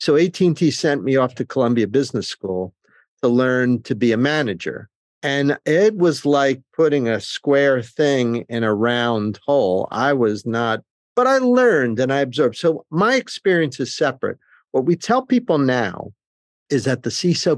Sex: male